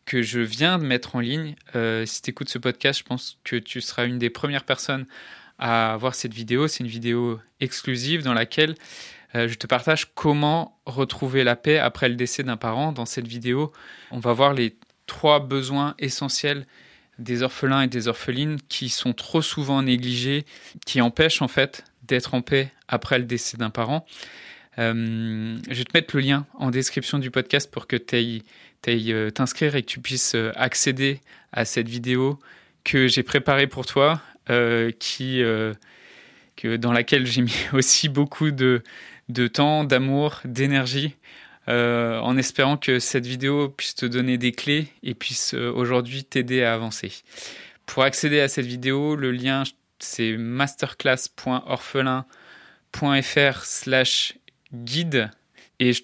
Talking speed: 160 wpm